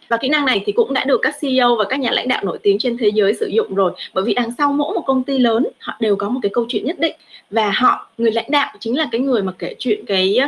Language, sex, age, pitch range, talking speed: Vietnamese, female, 20-39, 220-270 Hz, 310 wpm